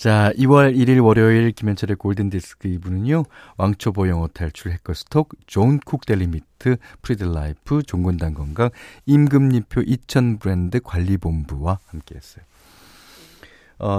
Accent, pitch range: native, 85-125 Hz